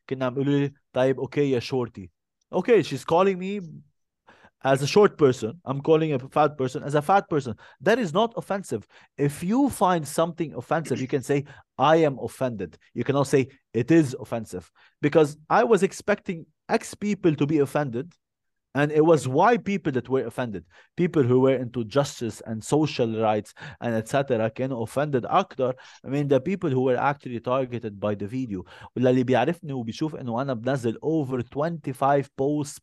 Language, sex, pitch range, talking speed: Arabic, male, 115-155 Hz, 155 wpm